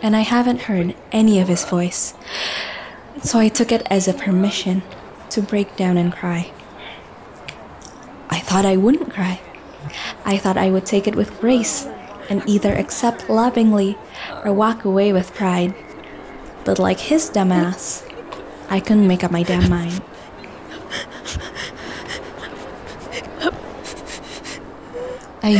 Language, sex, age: English, female, 10-29